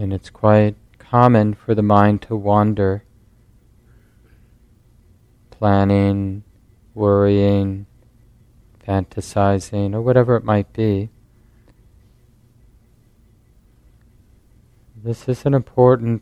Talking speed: 80 wpm